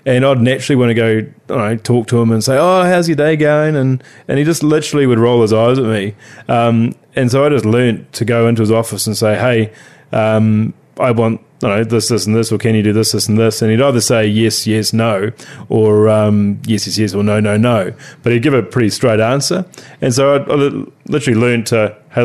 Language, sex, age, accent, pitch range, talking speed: English, male, 20-39, Australian, 110-130 Hz, 245 wpm